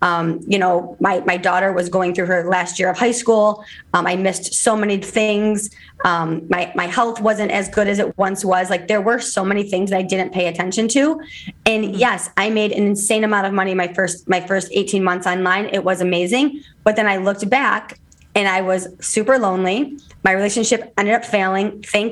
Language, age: English, 20-39